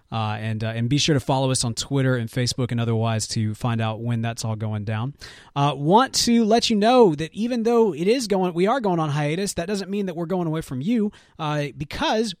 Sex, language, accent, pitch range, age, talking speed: male, English, American, 125-170 Hz, 30-49, 245 wpm